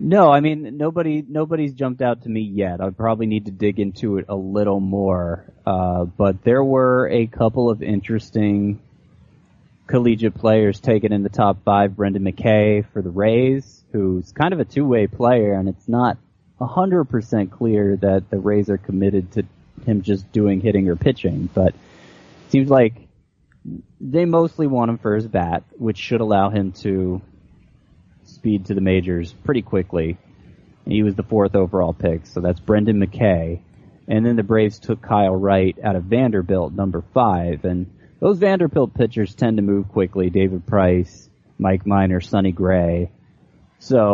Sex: male